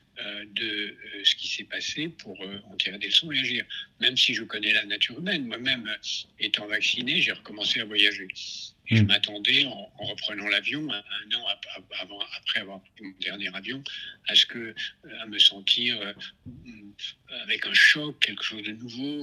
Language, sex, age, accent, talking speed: French, male, 60-79, French, 180 wpm